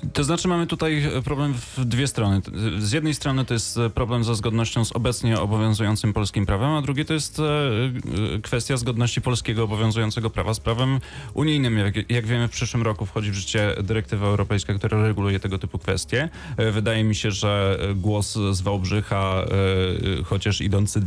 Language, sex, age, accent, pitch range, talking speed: Polish, male, 30-49, native, 105-125 Hz, 165 wpm